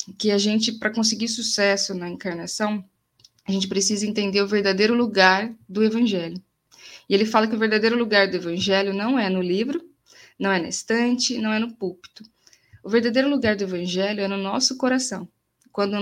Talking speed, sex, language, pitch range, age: 180 wpm, female, Portuguese, 190-225 Hz, 10-29